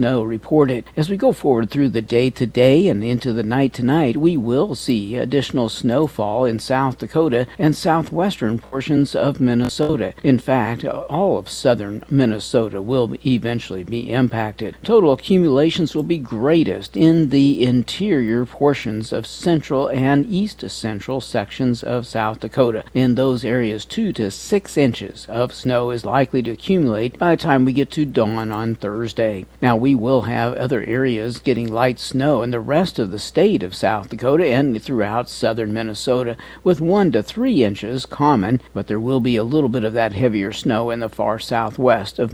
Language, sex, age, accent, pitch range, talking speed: English, male, 60-79, American, 115-140 Hz, 170 wpm